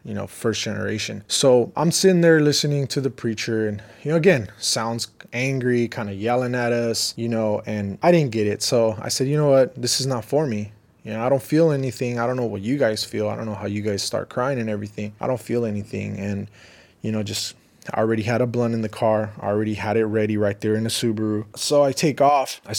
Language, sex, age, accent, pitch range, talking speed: English, male, 20-39, American, 110-140 Hz, 250 wpm